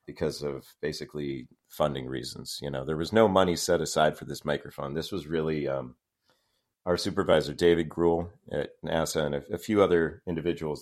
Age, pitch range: 40-59, 75-90 Hz